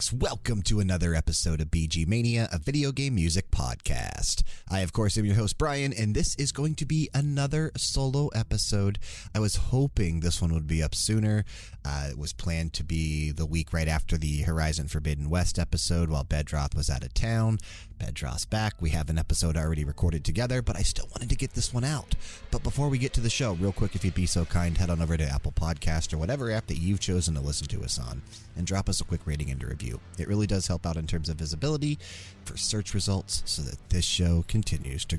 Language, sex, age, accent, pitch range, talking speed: English, male, 30-49, American, 80-110 Hz, 230 wpm